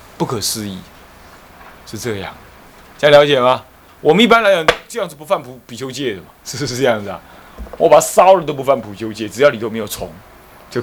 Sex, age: male, 30-49